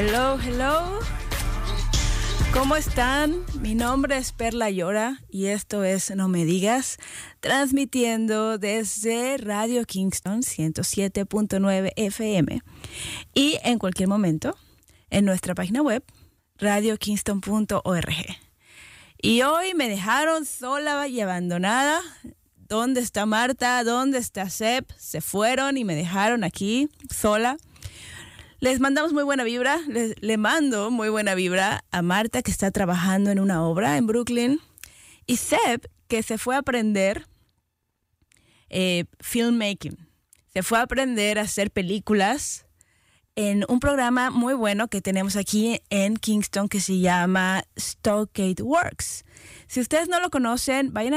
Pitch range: 195-250 Hz